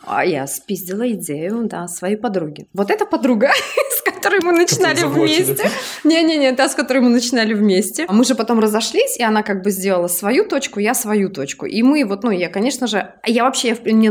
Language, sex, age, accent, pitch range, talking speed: Russian, female, 20-39, native, 200-260 Hz, 195 wpm